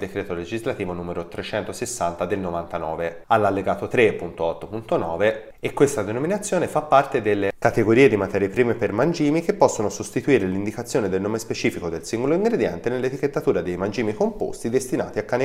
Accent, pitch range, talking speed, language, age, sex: native, 95-125 Hz, 145 wpm, Italian, 30-49, male